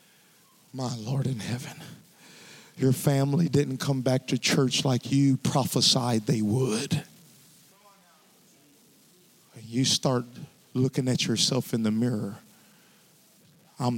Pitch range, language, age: 130-215 Hz, English, 50-69